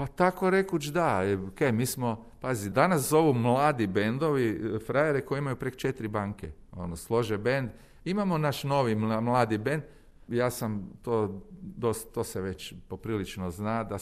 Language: Croatian